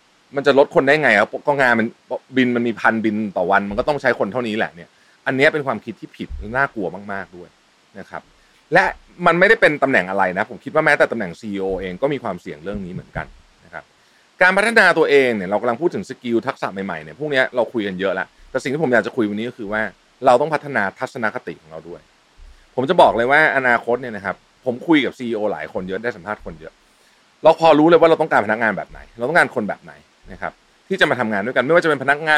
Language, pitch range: Thai, 95-140 Hz